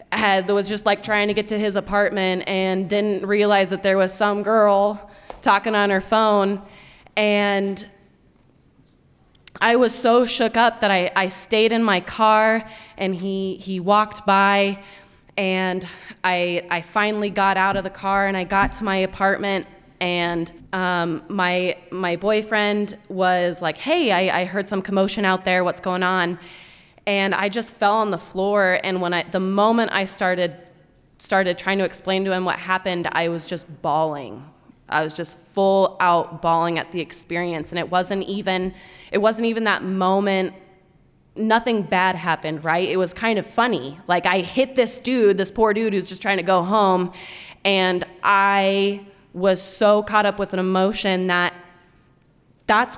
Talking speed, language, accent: 170 wpm, English, American